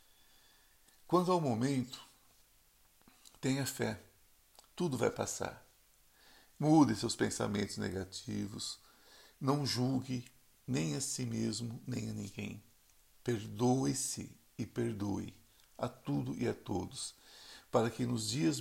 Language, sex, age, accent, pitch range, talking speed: Portuguese, male, 60-79, Brazilian, 105-130 Hz, 110 wpm